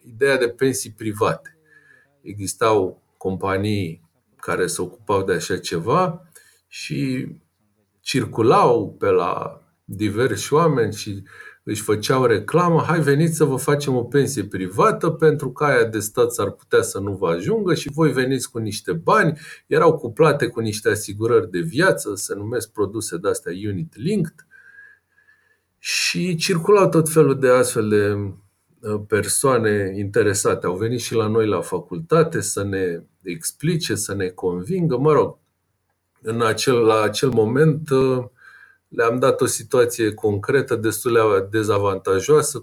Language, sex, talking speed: Romanian, male, 130 wpm